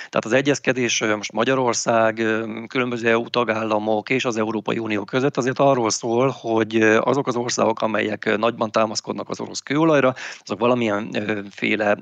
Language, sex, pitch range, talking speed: Hungarian, male, 105-130 Hz, 140 wpm